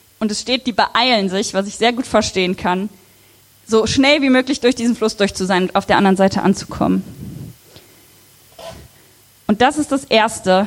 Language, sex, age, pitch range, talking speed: German, female, 20-39, 175-230 Hz, 185 wpm